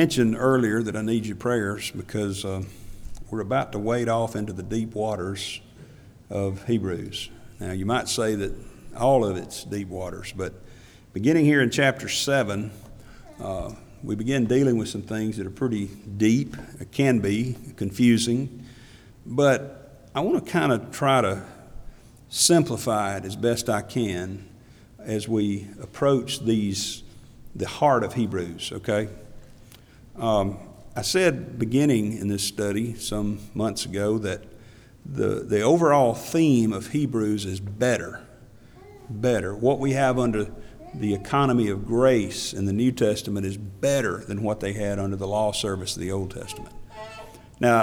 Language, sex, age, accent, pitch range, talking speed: English, male, 50-69, American, 105-125 Hz, 150 wpm